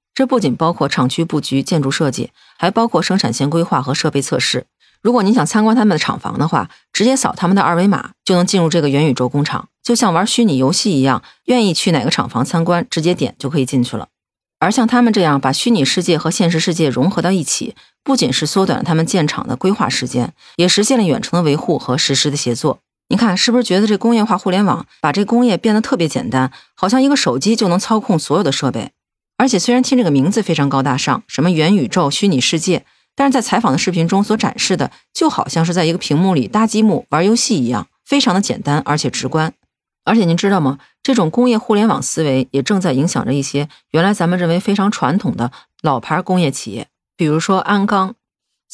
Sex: female